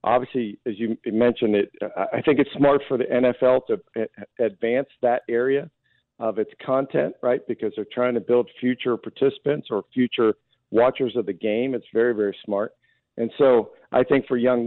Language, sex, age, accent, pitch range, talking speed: English, male, 50-69, American, 110-130 Hz, 180 wpm